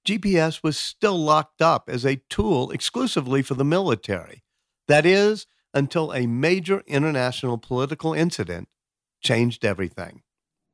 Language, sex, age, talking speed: English, male, 50-69, 125 wpm